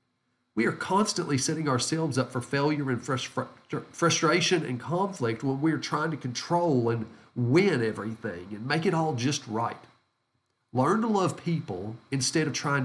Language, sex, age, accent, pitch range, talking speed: English, male, 40-59, American, 120-165 Hz, 160 wpm